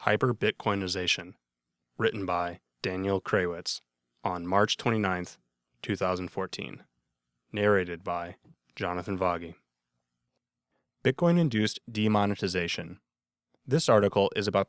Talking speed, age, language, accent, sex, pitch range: 80 wpm, 20-39, English, American, male, 90-110 Hz